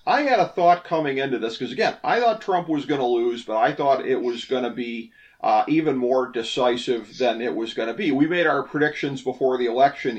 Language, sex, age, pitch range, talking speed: English, male, 40-59, 130-175 Hz, 235 wpm